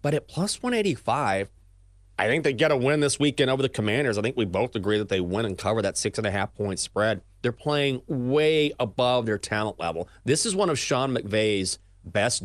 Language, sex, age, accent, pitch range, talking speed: English, male, 30-49, American, 105-145 Hz, 200 wpm